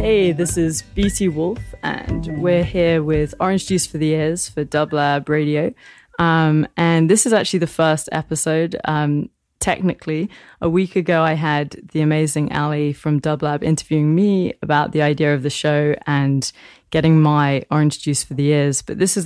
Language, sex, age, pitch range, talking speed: English, female, 20-39, 150-170 Hz, 175 wpm